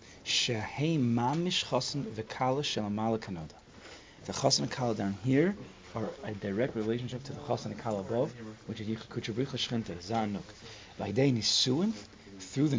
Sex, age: male, 30-49